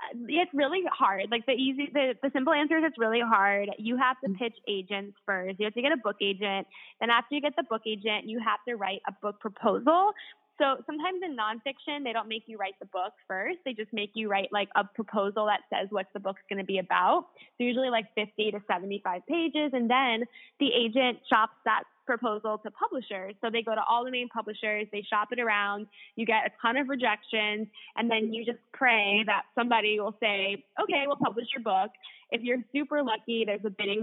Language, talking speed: English, 220 wpm